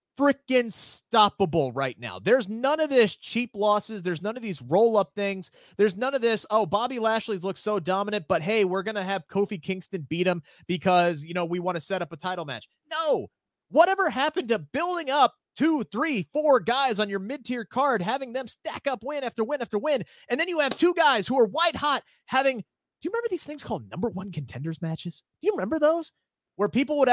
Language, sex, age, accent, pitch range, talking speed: English, male, 30-49, American, 205-305 Hz, 215 wpm